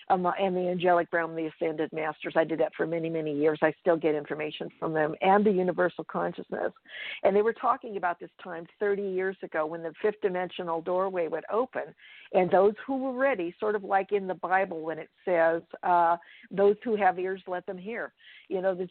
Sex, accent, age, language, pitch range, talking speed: female, American, 50-69, English, 180-205 Hz, 210 wpm